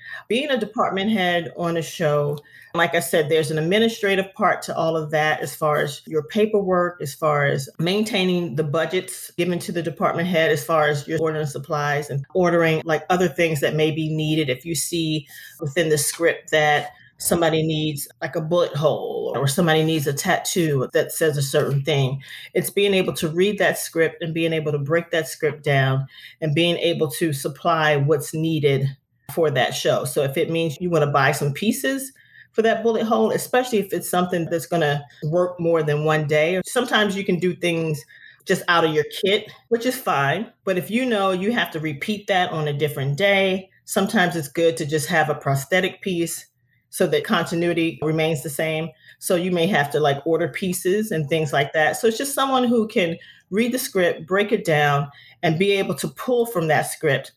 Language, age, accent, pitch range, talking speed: English, 40-59, American, 155-185 Hz, 205 wpm